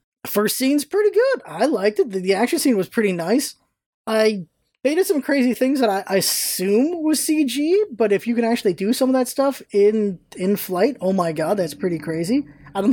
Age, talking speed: 20-39, 215 wpm